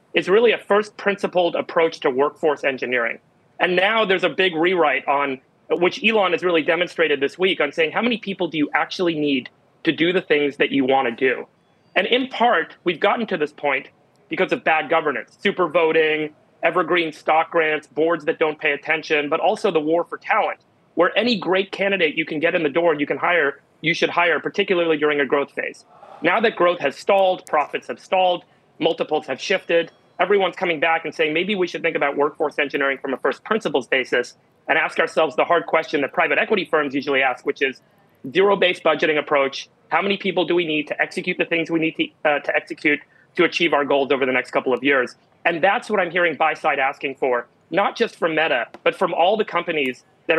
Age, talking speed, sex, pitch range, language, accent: 30-49, 215 wpm, male, 145-185 Hz, English, American